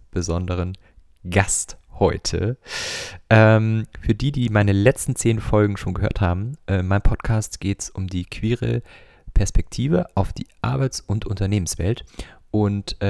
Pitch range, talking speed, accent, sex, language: 95-115 Hz, 135 wpm, German, male, German